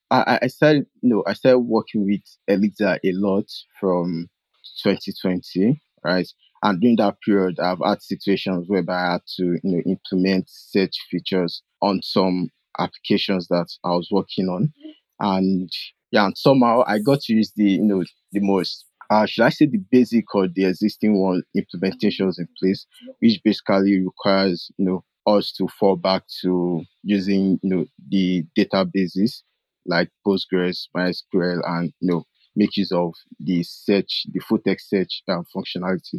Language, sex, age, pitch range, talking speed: English, male, 20-39, 90-105 Hz, 160 wpm